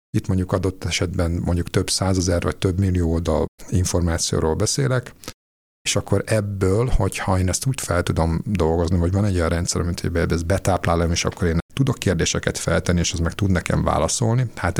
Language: Hungarian